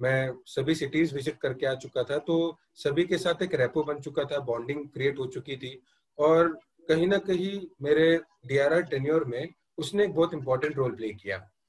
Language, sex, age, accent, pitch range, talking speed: Hindi, male, 30-49, native, 140-175 Hz, 190 wpm